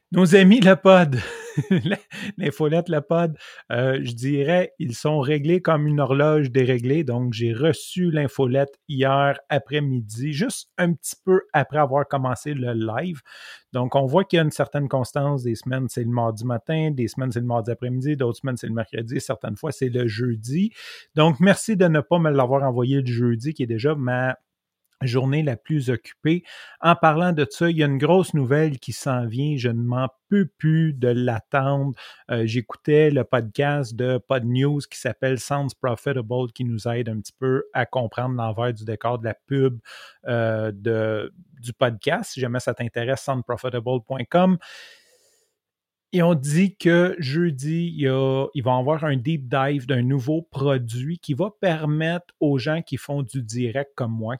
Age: 30-49